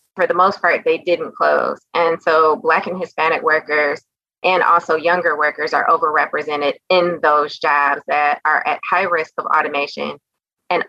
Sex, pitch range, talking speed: female, 150-175 Hz, 165 wpm